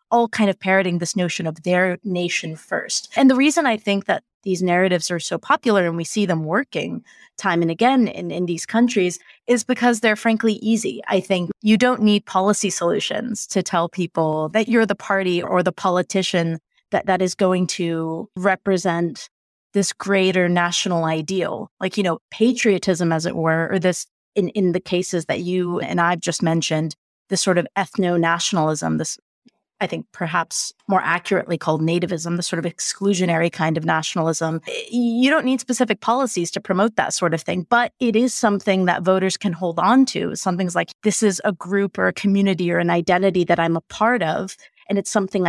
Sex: female